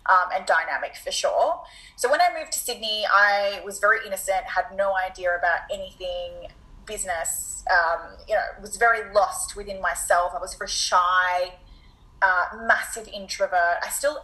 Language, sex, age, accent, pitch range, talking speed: English, female, 20-39, Australian, 185-250 Hz, 160 wpm